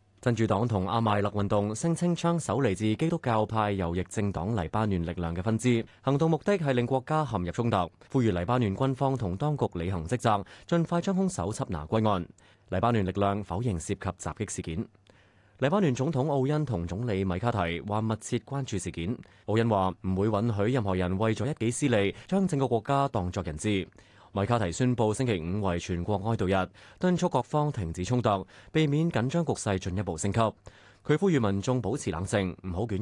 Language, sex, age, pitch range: Chinese, male, 20-39, 95-125 Hz